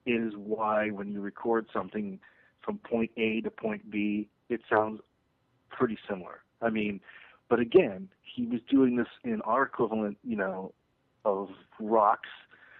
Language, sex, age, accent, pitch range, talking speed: English, male, 40-59, American, 105-125 Hz, 145 wpm